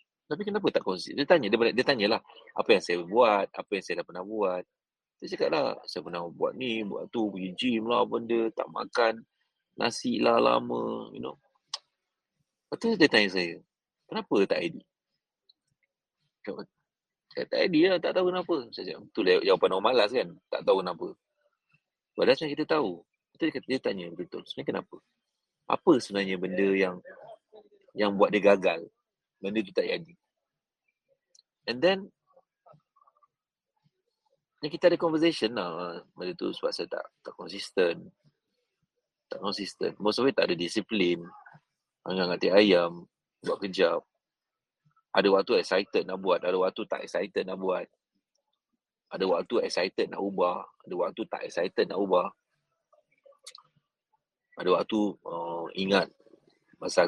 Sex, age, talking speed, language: male, 30-49, 145 wpm, Malay